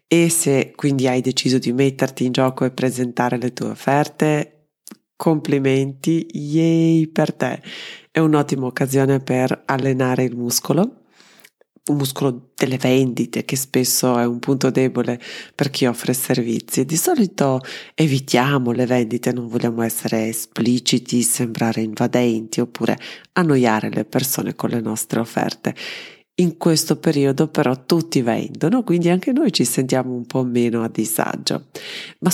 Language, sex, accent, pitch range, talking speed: Italian, female, native, 120-145 Hz, 140 wpm